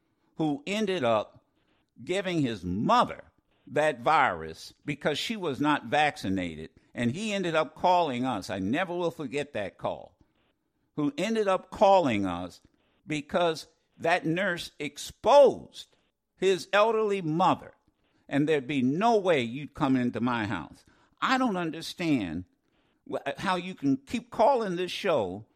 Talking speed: 135 wpm